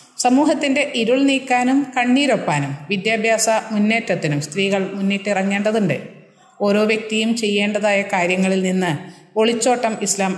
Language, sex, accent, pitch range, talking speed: Malayalam, female, native, 180-220 Hz, 85 wpm